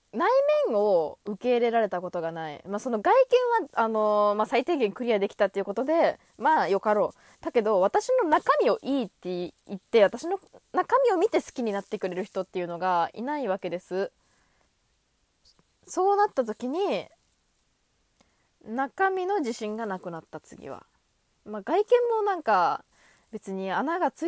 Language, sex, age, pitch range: Japanese, female, 20-39, 195-295 Hz